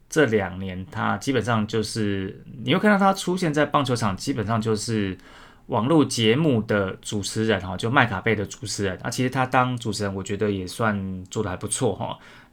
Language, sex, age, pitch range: Chinese, male, 30-49, 105-140 Hz